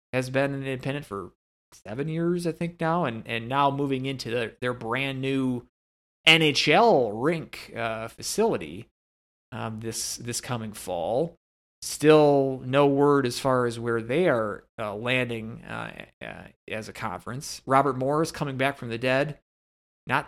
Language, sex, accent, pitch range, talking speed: English, male, American, 110-150 Hz, 155 wpm